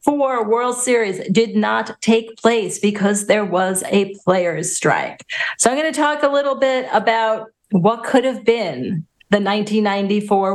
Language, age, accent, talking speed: English, 40-59, American, 155 wpm